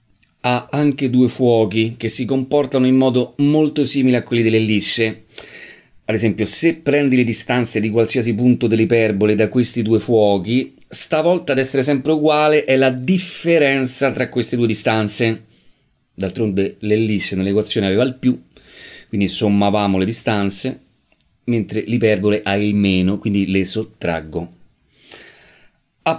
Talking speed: 135 wpm